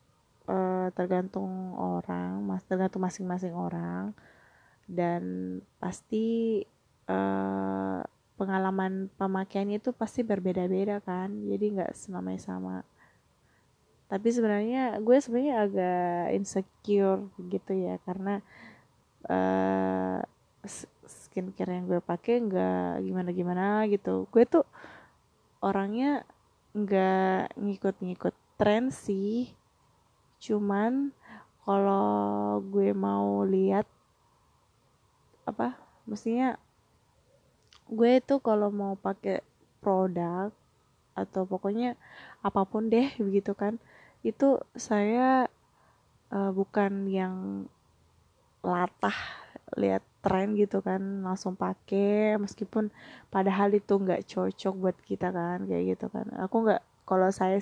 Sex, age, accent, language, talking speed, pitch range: female, 20-39, native, Indonesian, 95 wpm, 175-210 Hz